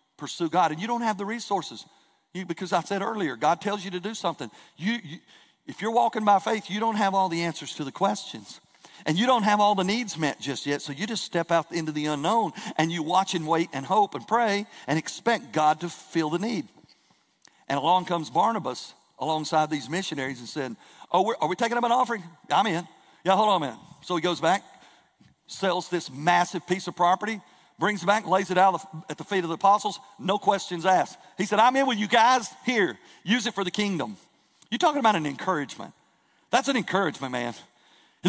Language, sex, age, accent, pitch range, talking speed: English, male, 50-69, American, 165-225 Hz, 215 wpm